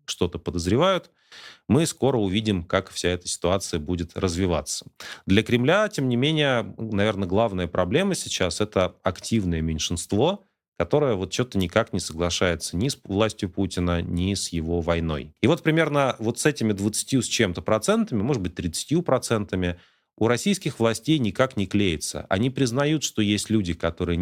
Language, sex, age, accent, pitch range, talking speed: Russian, male, 30-49, native, 90-115 Hz, 155 wpm